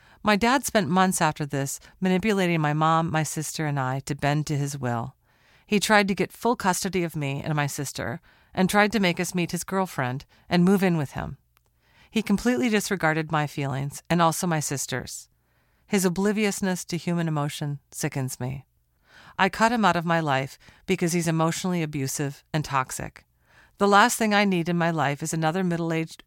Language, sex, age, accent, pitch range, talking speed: English, female, 40-59, American, 140-180 Hz, 185 wpm